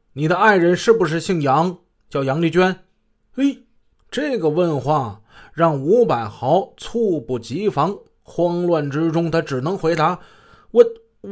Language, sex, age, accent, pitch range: Chinese, male, 20-39, native, 125-175 Hz